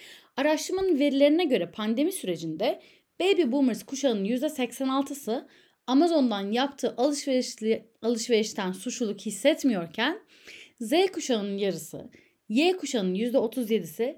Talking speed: 85 wpm